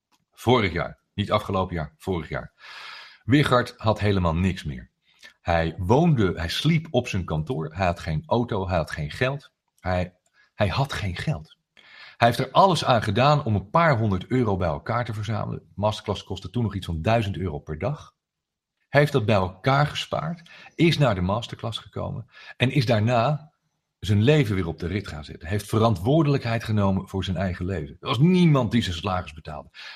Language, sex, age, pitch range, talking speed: Dutch, male, 40-59, 90-125 Hz, 190 wpm